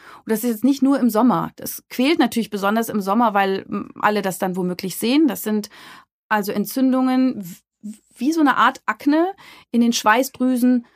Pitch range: 205-245 Hz